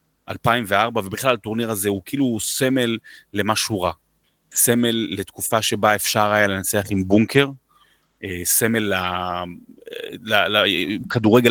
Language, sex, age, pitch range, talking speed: Hebrew, male, 30-49, 105-135 Hz, 100 wpm